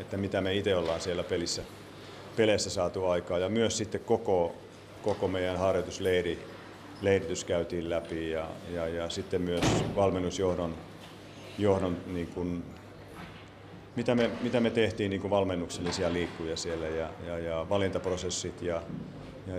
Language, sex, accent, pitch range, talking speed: Finnish, male, native, 85-100 Hz, 130 wpm